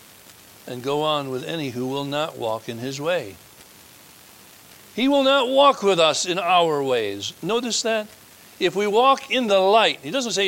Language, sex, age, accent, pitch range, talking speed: English, male, 60-79, American, 135-185 Hz, 185 wpm